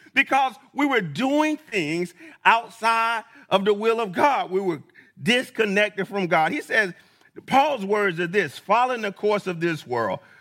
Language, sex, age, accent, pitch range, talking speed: English, male, 40-59, American, 175-230 Hz, 160 wpm